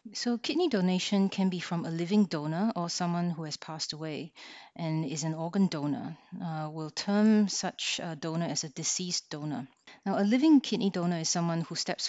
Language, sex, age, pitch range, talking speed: English, female, 30-49, 160-195 Hz, 195 wpm